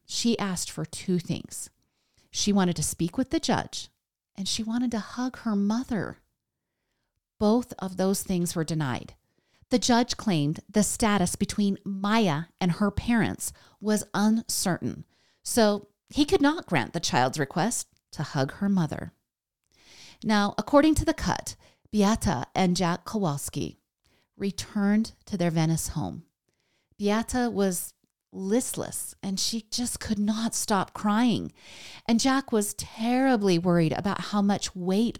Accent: American